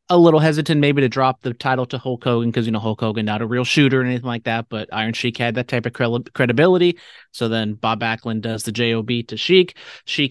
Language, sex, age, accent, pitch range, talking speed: English, male, 30-49, American, 115-130 Hz, 245 wpm